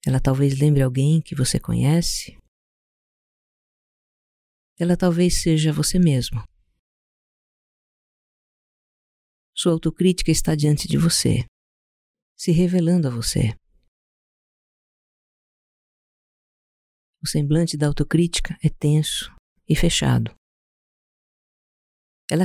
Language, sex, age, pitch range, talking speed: Portuguese, female, 50-69, 135-175 Hz, 85 wpm